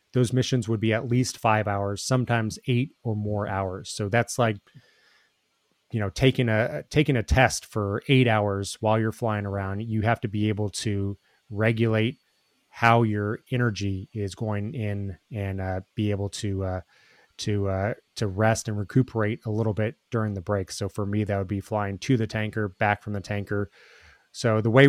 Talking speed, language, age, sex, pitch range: 190 wpm, English, 30-49, male, 100-115 Hz